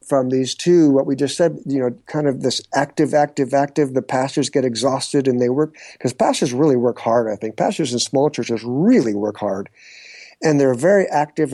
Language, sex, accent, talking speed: English, male, American, 210 wpm